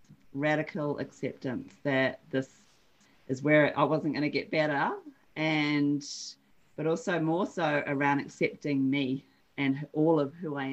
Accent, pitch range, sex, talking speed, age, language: Australian, 140-165 Hz, female, 140 wpm, 40-59, English